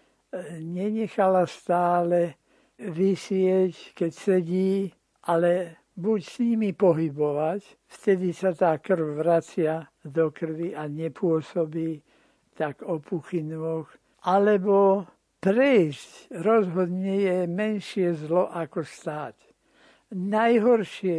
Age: 60-79